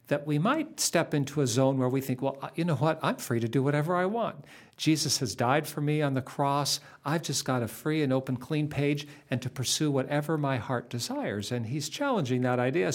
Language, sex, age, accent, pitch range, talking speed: English, male, 50-69, American, 120-155 Hz, 230 wpm